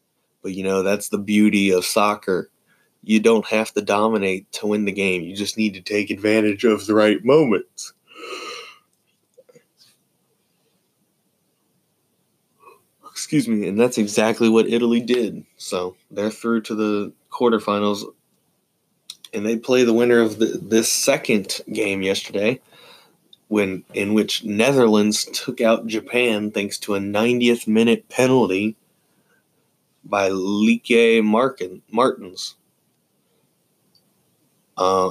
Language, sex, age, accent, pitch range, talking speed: English, male, 20-39, American, 100-115 Hz, 120 wpm